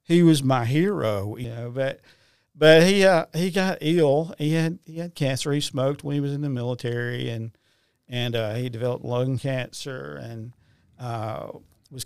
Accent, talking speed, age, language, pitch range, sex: American, 180 wpm, 50-69, English, 120-140 Hz, male